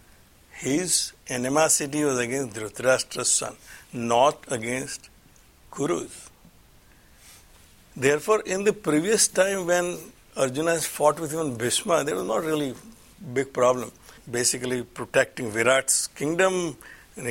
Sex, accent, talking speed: male, Indian, 110 wpm